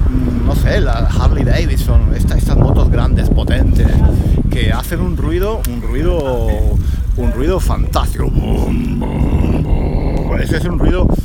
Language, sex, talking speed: Spanish, male, 125 wpm